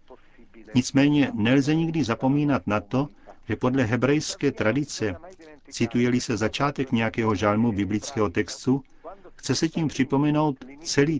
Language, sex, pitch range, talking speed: Czech, male, 115-145 Hz, 120 wpm